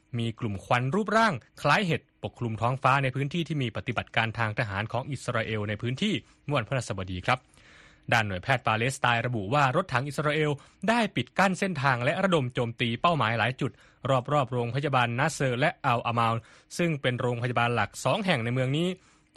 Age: 20-39